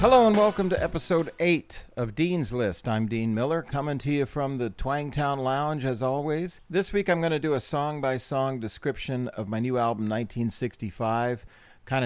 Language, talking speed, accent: English, 180 wpm, American